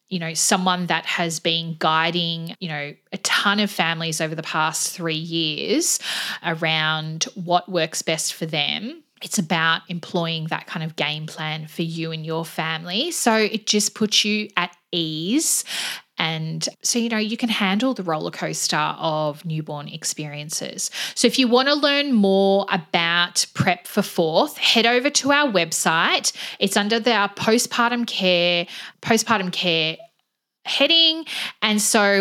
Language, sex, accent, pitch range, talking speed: English, female, Australian, 170-210 Hz, 155 wpm